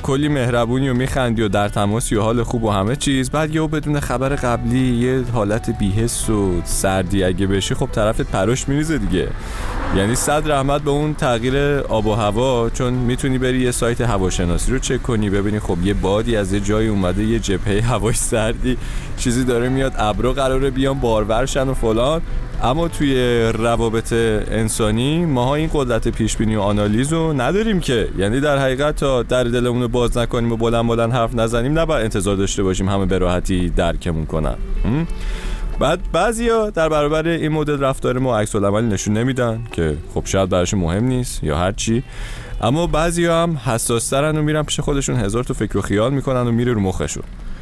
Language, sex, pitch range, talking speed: Persian, male, 105-135 Hz, 180 wpm